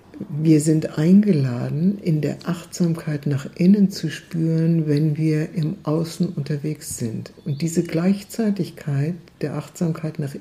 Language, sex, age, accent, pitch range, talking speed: German, female, 60-79, German, 135-170 Hz, 125 wpm